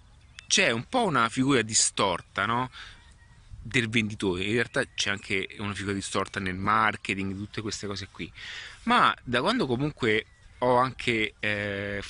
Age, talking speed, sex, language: 30-49, 145 wpm, male, Italian